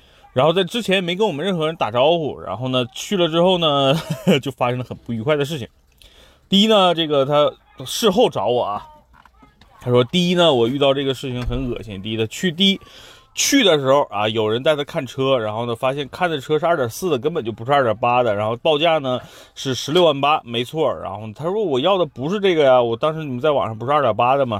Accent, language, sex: native, Chinese, male